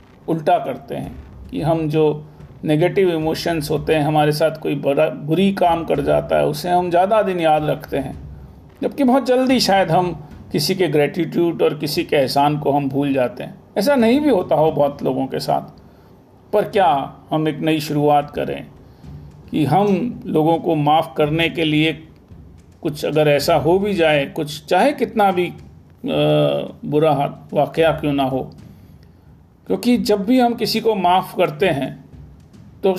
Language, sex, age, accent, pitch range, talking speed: Hindi, male, 40-59, native, 145-190 Hz, 165 wpm